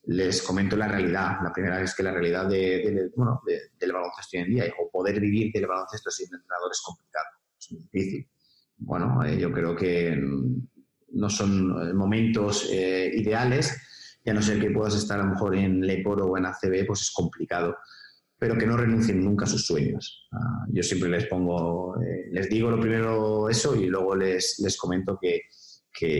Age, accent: 30-49, Spanish